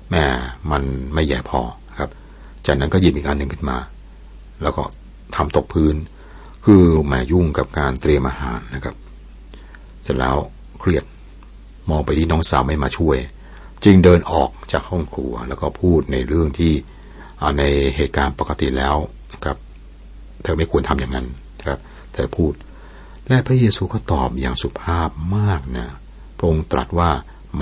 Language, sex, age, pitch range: Thai, male, 60-79, 65-85 Hz